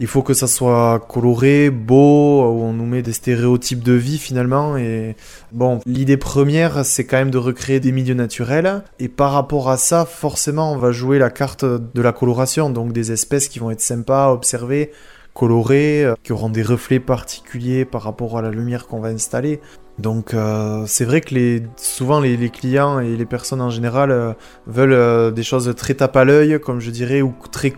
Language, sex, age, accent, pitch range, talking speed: French, male, 20-39, French, 115-135 Hz, 205 wpm